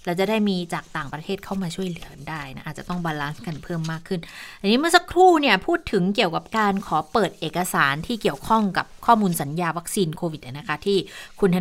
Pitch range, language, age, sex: 170-215 Hz, Thai, 20-39, female